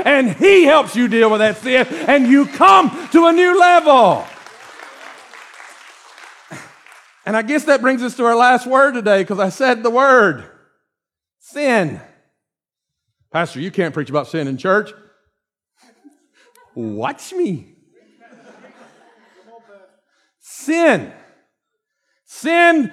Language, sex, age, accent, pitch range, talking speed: English, male, 50-69, American, 200-305 Hz, 115 wpm